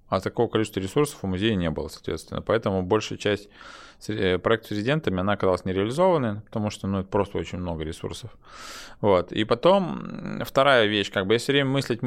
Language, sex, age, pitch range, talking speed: Russian, male, 20-39, 95-120 Hz, 185 wpm